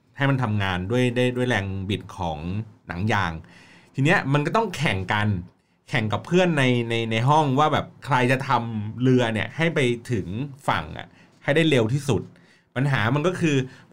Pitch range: 120-160 Hz